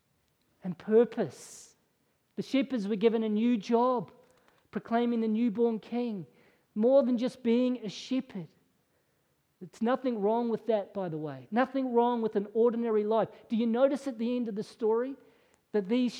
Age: 40-59